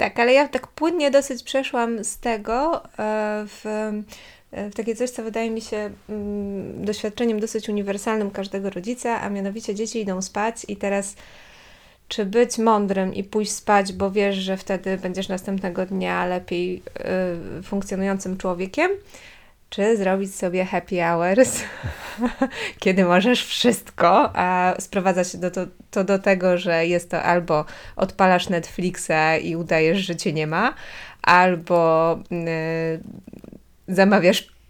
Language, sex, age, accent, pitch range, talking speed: Polish, female, 20-39, native, 180-215 Hz, 130 wpm